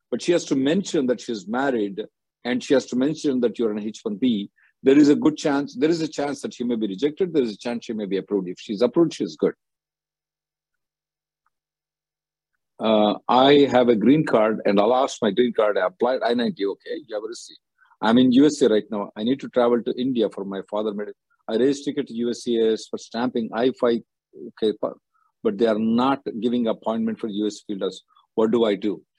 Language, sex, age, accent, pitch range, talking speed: English, male, 50-69, Indian, 110-155 Hz, 210 wpm